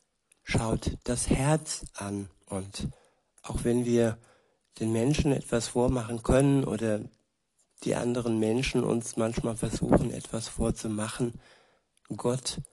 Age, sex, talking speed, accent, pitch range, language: 60-79, male, 110 wpm, German, 110-125 Hz, German